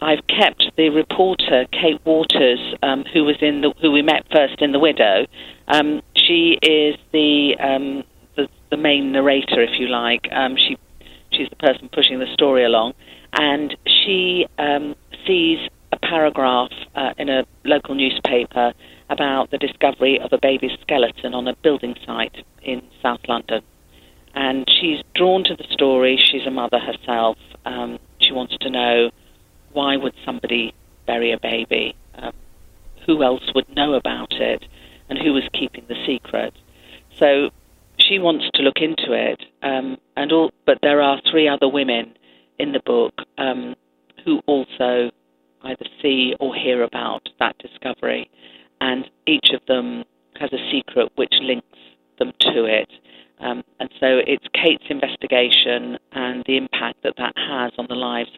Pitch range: 110-145 Hz